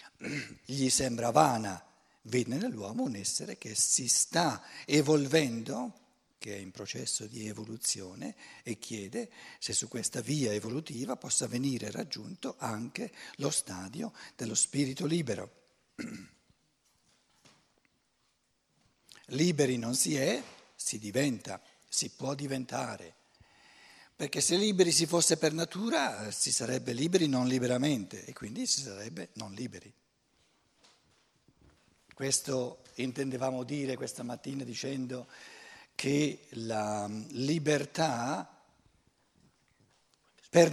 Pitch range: 125-170 Hz